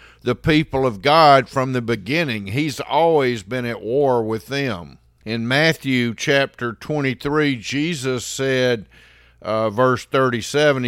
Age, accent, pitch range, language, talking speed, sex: 50-69, American, 120-145 Hz, English, 125 wpm, male